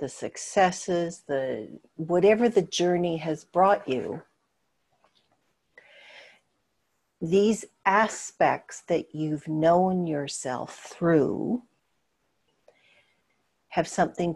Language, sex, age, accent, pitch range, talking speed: English, female, 60-79, American, 155-195 Hz, 75 wpm